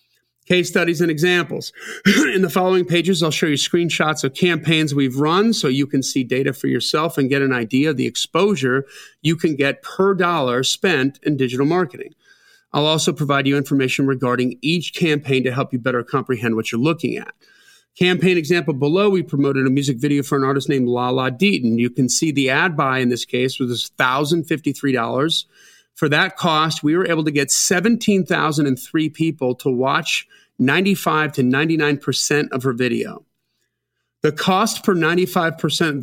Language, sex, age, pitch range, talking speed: English, male, 40-59, 135-180 Hz, 170 wpm